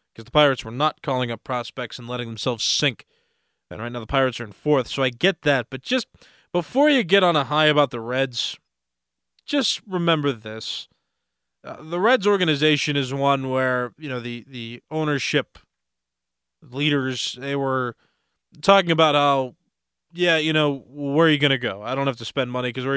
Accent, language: American, English